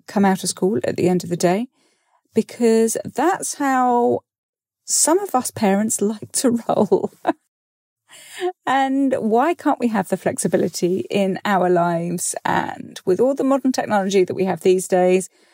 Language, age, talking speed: English, 40-59, 160 wpm